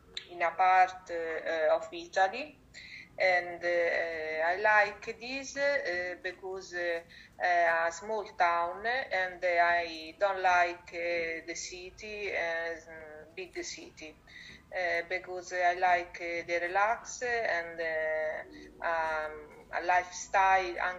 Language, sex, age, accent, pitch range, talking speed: English, female, 30-49, Italian, 165-185 Hz, 110 wpm